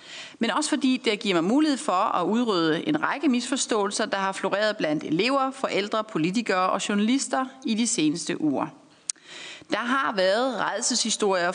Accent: native